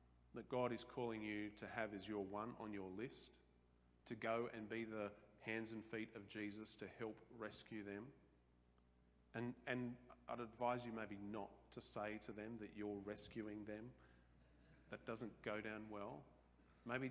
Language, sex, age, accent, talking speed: English, male, 40-59, Australian, 170 wpm